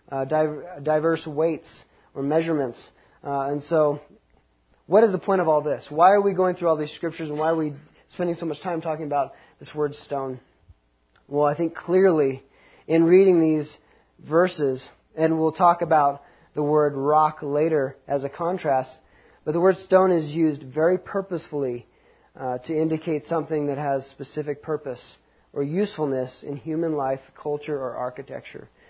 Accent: American